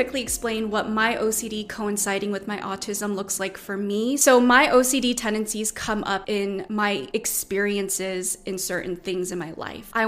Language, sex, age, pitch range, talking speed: English, female, 20-39, 200-230 Hz, 165 wpm